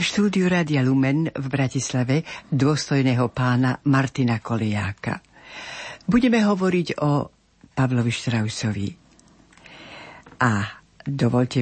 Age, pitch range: 60-79, 125-150 Hz